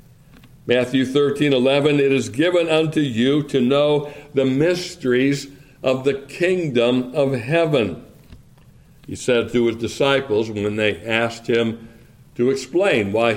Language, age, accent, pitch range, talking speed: English, 60-79, American, 130-165 Hz, 130 wpm